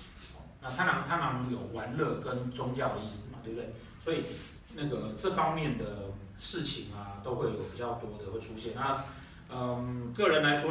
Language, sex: Chinese, male